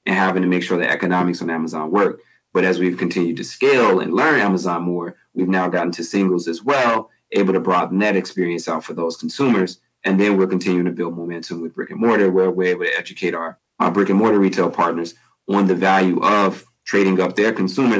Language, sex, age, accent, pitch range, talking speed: English, male, 30-49, American, 85-100 Hz, 225 wpm